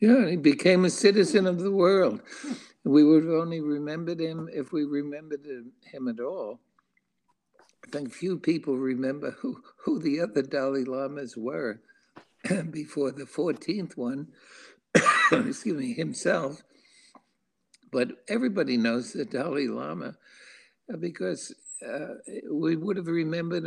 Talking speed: 130 wpm